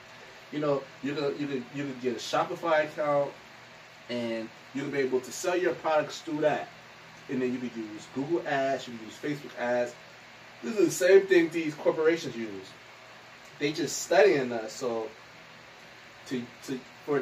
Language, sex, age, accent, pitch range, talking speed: English, male, 30-49, American, 125-195 Hz, 165 wpm